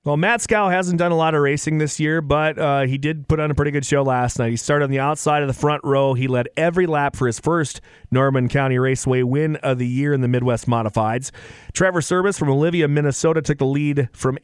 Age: 30-49